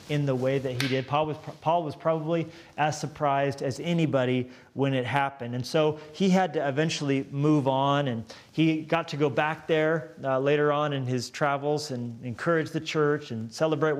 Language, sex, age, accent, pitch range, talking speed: English, male, 30-49, American, 125-155 Hz, 190 wpm